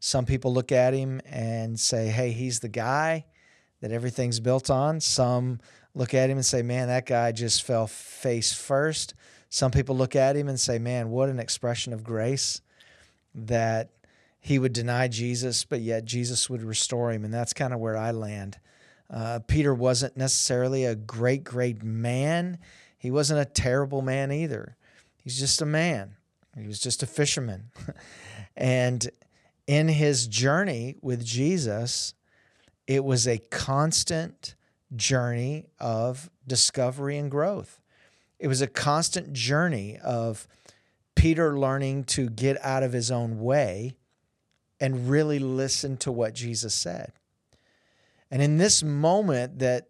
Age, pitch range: 40-59, 115-140 Hz